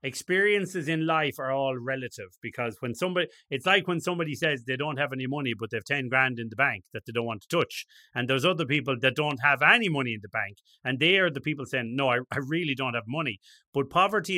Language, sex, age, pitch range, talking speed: English, male, 30-49, 125-160 Hz, 250 wpm